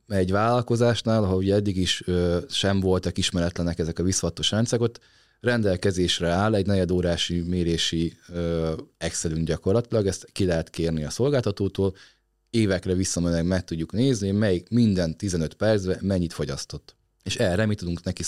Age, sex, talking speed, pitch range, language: 30-49, male, 140 wpm, 85-105 Hz, Hungarian